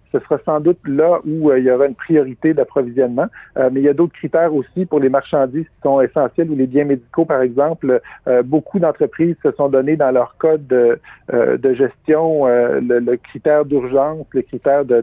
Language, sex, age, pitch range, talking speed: French, male, 50-69, 130-160 Hz, 215 wpm